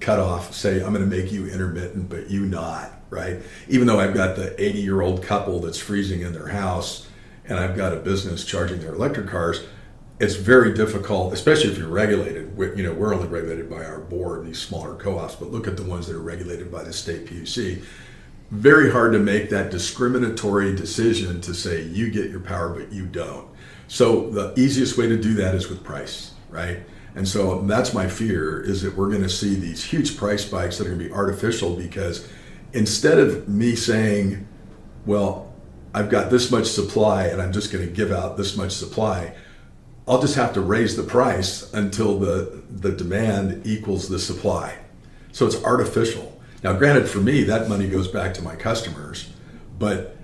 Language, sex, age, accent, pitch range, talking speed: English, male, 50-69, American, 90-105 Hz, 195 wpm